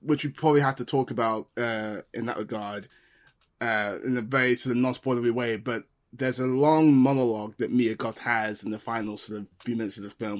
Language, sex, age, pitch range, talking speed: English, male, 20-39, 120-165 Hz, 220 wpm